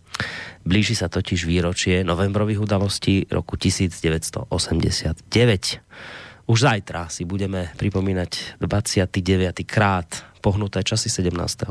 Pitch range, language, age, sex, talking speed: 90-110 Hz, Slovak, 20-39, male, 90 wpm